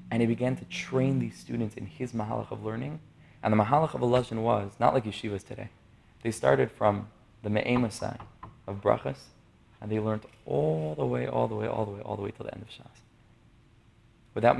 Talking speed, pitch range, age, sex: 205 wpm, 105-125 Hz, 20-39, male